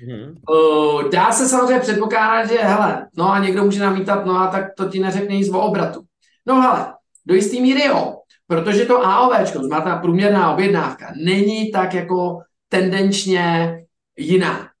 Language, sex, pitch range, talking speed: Czech, male, 160-195 Hz, 155 wpm